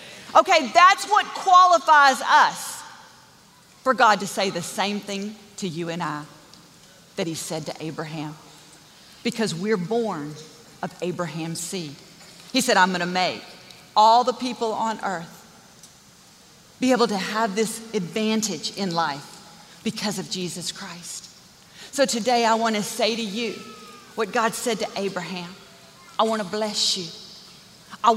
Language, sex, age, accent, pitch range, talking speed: English, female, 40-59, American, 180-235 Hz, 140 wpm